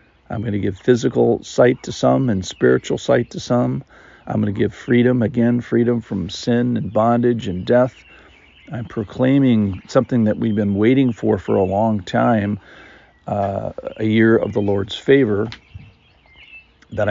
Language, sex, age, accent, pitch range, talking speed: English, male, 50-69, American, 100-120 Hz, 160 wpm